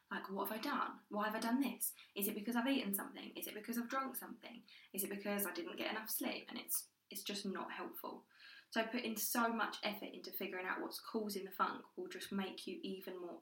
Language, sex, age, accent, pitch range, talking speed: English, female, 20-39, British, 200-255 Hz, 240 wpm